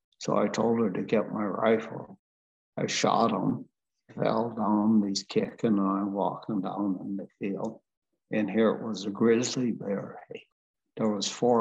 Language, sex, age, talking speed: English, male, 60-79, 165 wpm